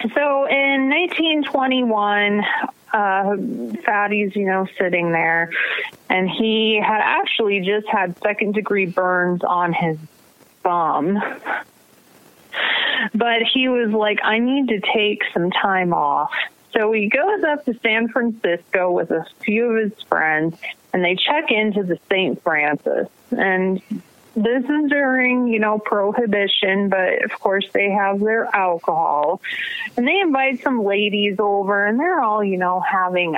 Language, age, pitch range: English, 30-49, 190-245 Hz